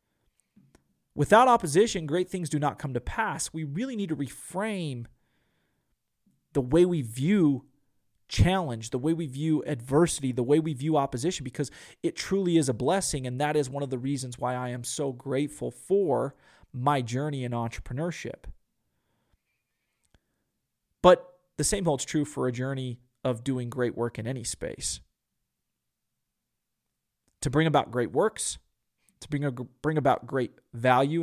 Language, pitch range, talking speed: English, 125-160 Hz, 150 wpm